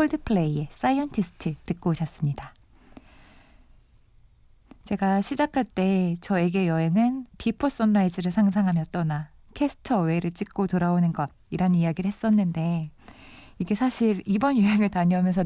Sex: female